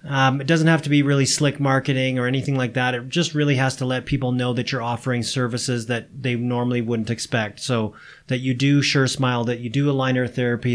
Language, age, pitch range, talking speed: English, 30-49, 125-145 Hz, 230 wpm